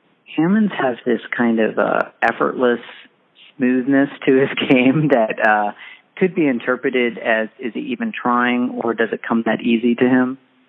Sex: male